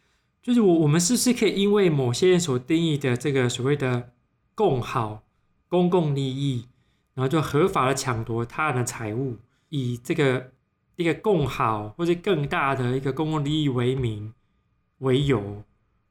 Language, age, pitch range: Chinese, 20-39, 125-160 Hz